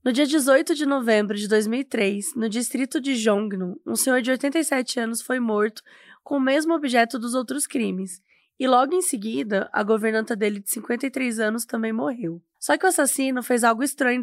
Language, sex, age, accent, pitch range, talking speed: Portuguese, female, 10-29, Brazilian, 220-290 Hz, 185 wpm